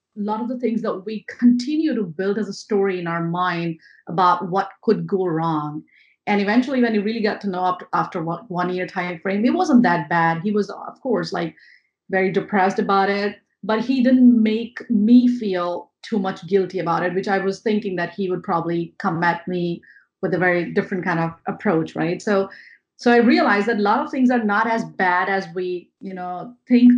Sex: female